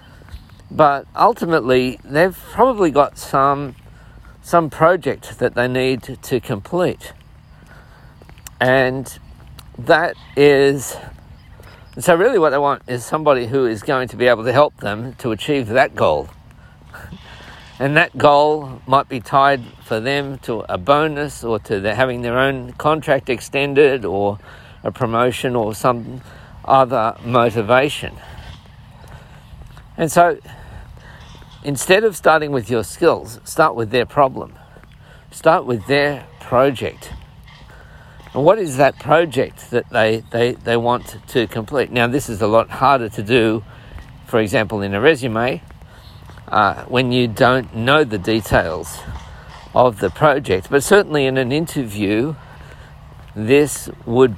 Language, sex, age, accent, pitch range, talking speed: English, male, 50-69, Australian, 115-140 Hz, 130 wpm